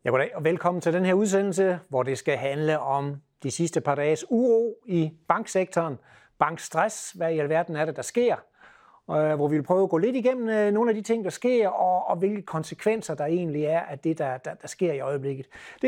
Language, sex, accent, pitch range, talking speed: Danish, male, native, 160-210 Hz, 210 wpm